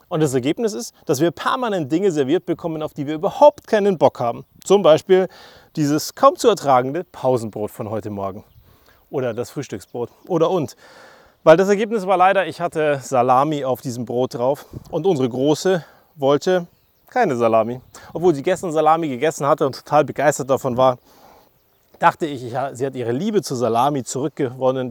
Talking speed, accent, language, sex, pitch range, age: 170 wpm, German, German, male, 125-175 Hz, 30-49